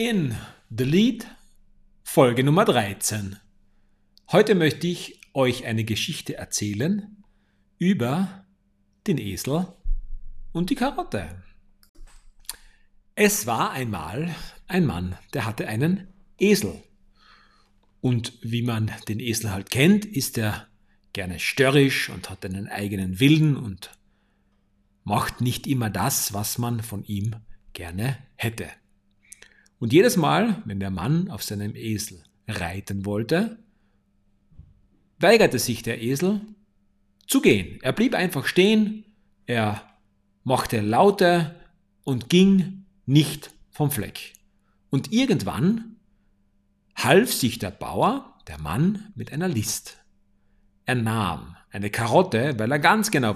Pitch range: 100-160 Hz